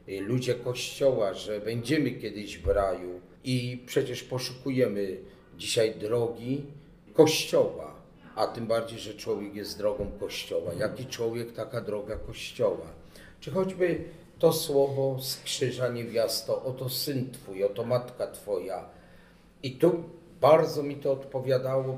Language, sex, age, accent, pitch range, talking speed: Polish, male, 40-59, native, 110-155 Hz, 120 wpm